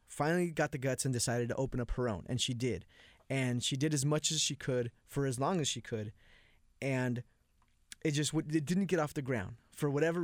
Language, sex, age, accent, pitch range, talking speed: English, male, 20-39, American, 120-145 Hz, 235 wpm